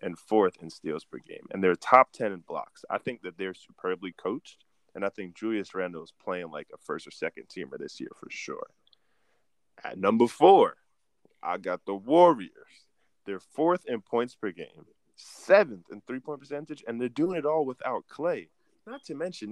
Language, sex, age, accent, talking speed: English, male, 20-39, American, 190 wpm